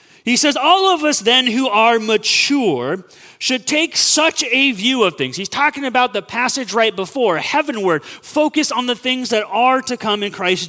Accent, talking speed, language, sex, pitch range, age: American, 190 wpm, English, male, 210-280 Hz, 30-49